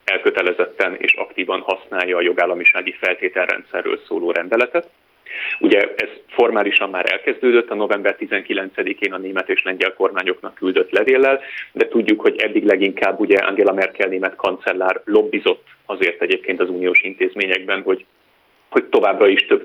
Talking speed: 135 wpm